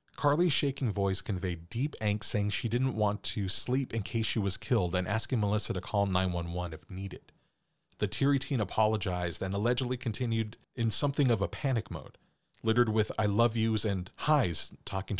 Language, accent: English, American